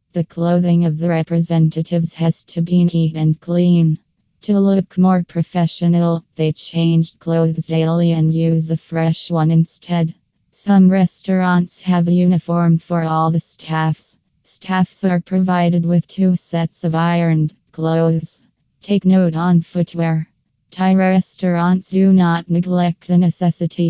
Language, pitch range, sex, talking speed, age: English, 165-180 Hz, female, 135 wpm, 20-39